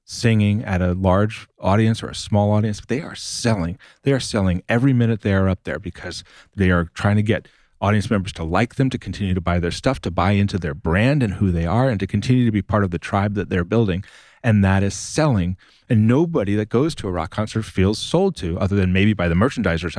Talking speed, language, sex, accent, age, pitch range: 240 wpm, English, male, American, 40-59, 95-115 Hz